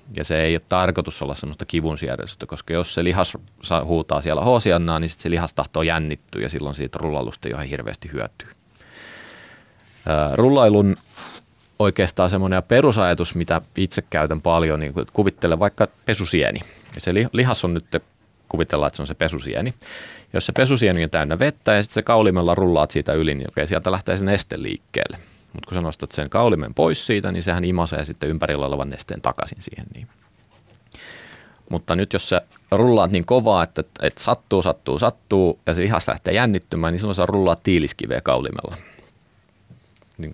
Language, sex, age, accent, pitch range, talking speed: Finnish, male, 30-49, native, 80-100 Hz, 165 wpm